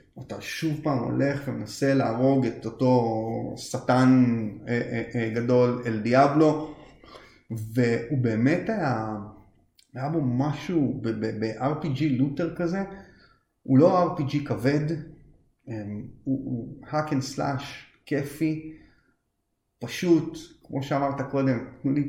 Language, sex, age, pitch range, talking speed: Hebrew, male, 30-49, 120-140 Hz, 85 wpm